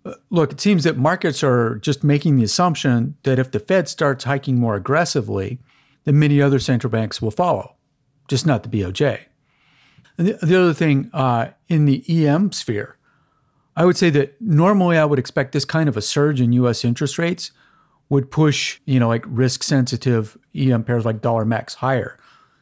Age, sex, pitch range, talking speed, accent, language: 40-59, male, 125-155 Hz, 180 wpm, American, English